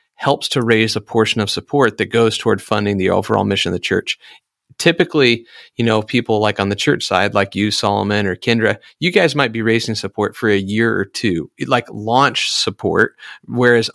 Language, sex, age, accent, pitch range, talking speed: English, male, 40-59, American, 105-125 Hz, 200 wpm